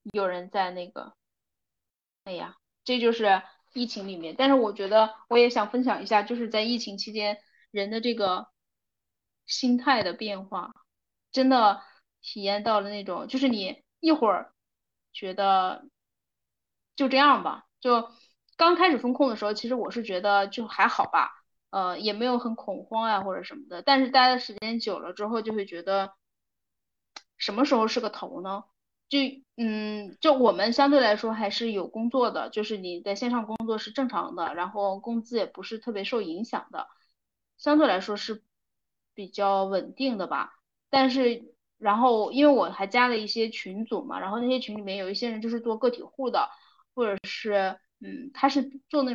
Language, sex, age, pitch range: Chinese, female, 10-29, 200-255 Hz